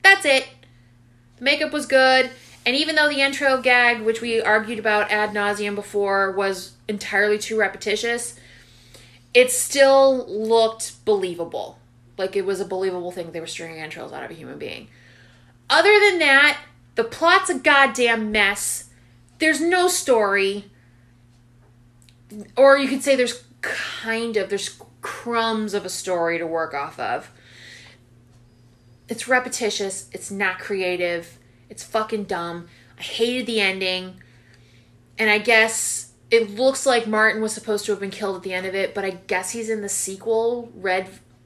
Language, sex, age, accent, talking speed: English, female, 30-49, American, 155 wpm